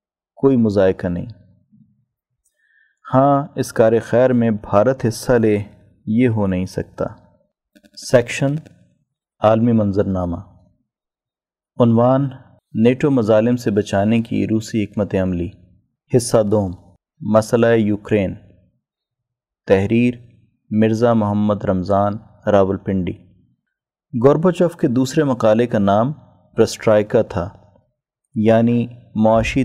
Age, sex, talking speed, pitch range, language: 30-49, male, 95 wpm, 100-120 Hz, Urdu